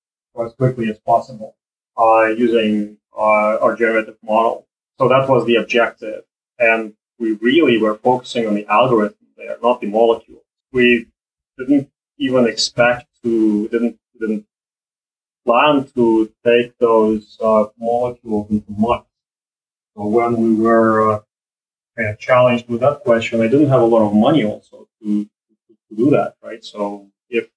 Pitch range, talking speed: 110-120 Hz, 150 wpm